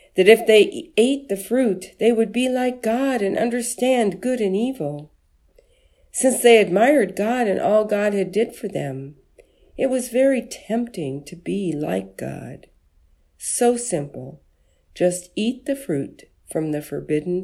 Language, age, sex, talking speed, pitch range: English, 50-69, female, 150 wpm, 150-235 Hz